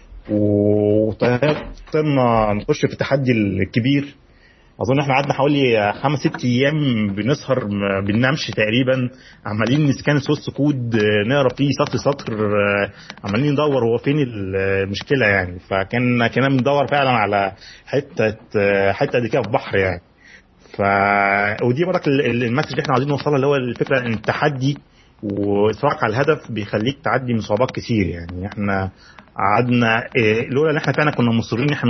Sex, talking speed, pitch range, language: male, 140 wpm, 105-135 Hz, Arabic